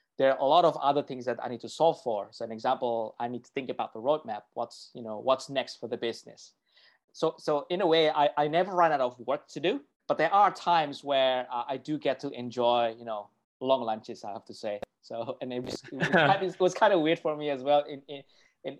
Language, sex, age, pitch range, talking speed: English, male, 20-39, 120-145 Hz, 260 wpm